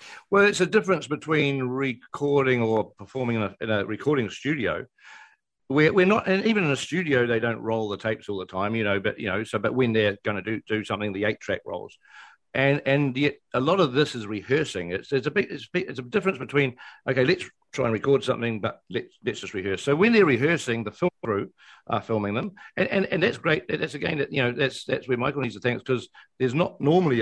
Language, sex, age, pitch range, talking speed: English, male, 50-69, 110-145 Hz, 245 wpm